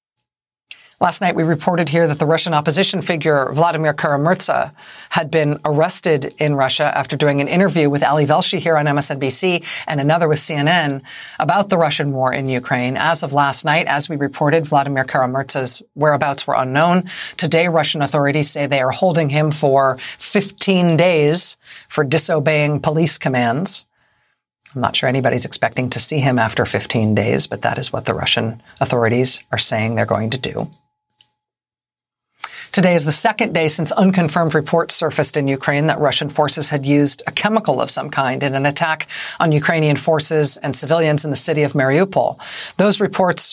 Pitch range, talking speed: 145-180 Hz, 170 wpm